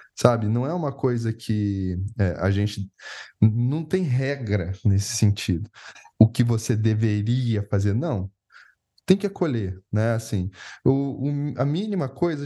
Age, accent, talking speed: 10-29, Brazilian, 130 wpm